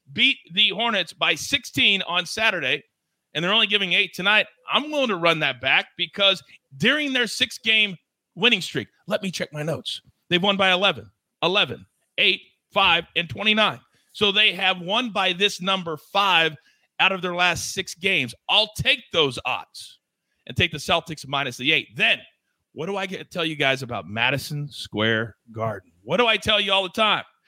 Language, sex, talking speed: English, male, 185 wpm